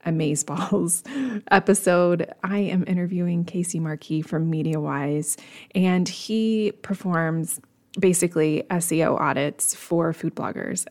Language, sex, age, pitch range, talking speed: English, female, 20-39, 165-195 Hz, 100 wpm